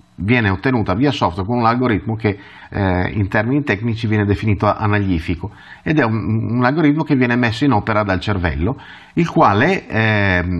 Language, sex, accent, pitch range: Italian, male, native, 90-125 Hz